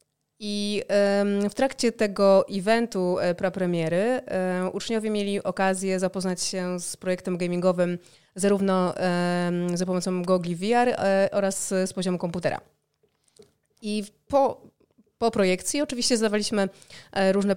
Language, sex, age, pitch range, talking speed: Polish, female, 20-39, 185-215 Hz, 100 wpm